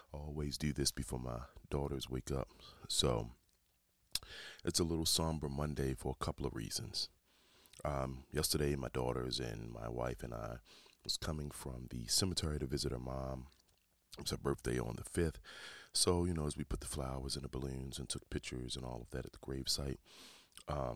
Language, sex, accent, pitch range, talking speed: English, male, American, 65-75 Hz, 185 wpm